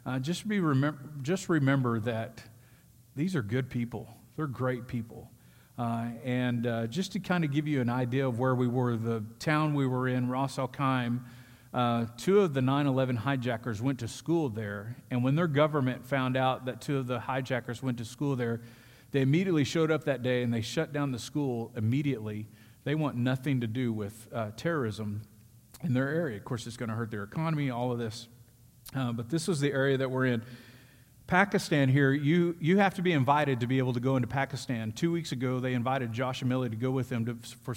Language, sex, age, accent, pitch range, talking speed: English, male, 40-59, American, 120-140 Hz, 215 wpm